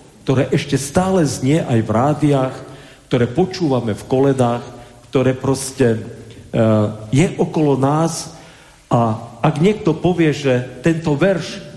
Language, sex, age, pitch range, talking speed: Slovak, male, 40-59, 110-150 Hz, 120 wpm